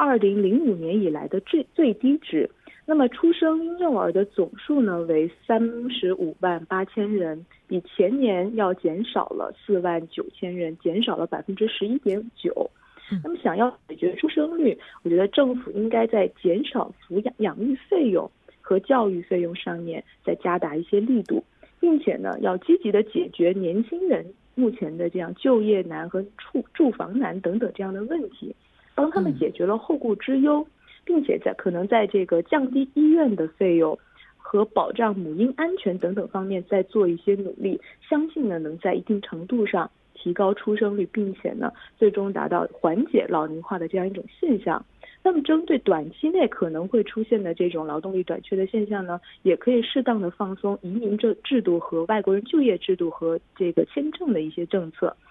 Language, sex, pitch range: Korean, female, 180-260 Hz